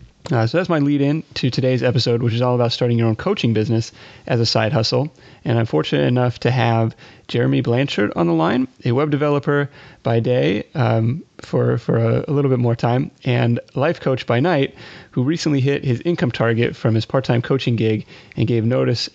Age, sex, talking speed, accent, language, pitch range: 30-49, male, 210 wpm, American, English, 115-135 Hz